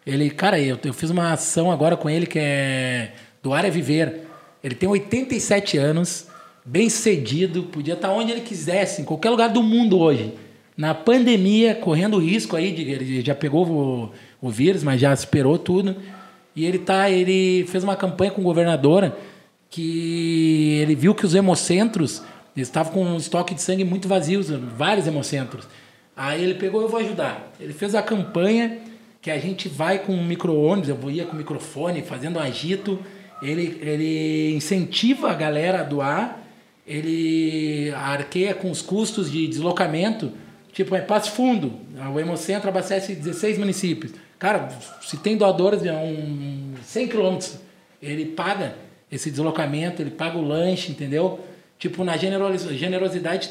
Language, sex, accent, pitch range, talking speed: Portuguese, male, Brazilian, 155-195 Hz, 165 wpm